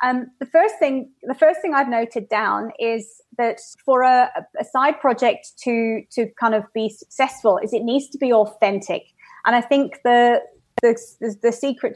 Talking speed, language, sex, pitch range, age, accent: 185 wpm, English, female, 215-255 Hz, 30-49, British